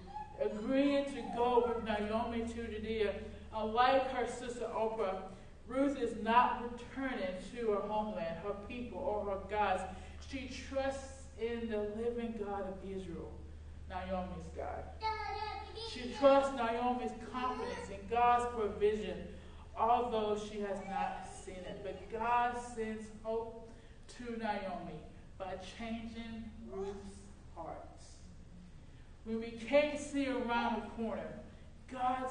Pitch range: 210-270 Hz